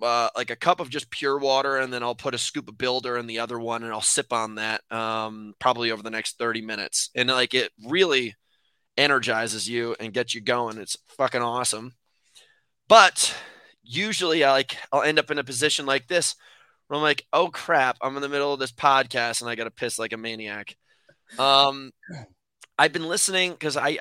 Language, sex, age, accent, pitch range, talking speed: English, male, 20-39, American, 115-145 Hz, 205 wpm